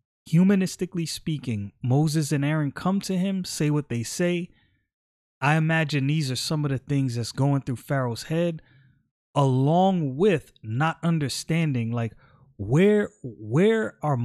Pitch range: 115-160 Hz